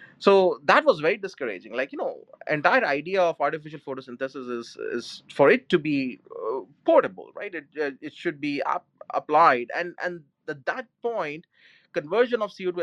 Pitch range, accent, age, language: 130-210 Hz, Indian, 30-49, English